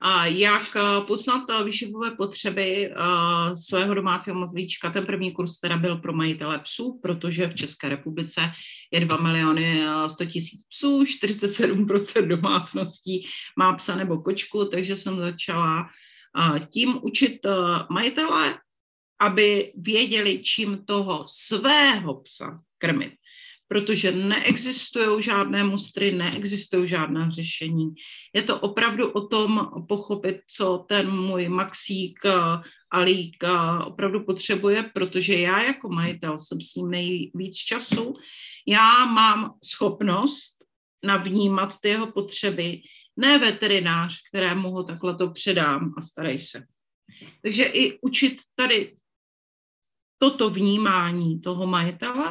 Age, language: 40-59, Czech